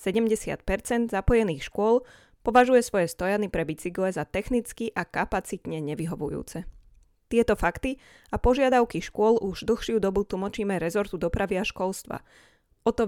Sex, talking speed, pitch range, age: female, 130 wpm, 190-240 Hz, 20-39